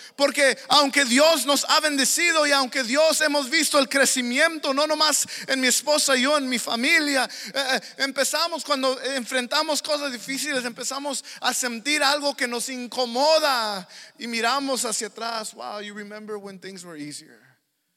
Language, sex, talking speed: English, male, 155 wpm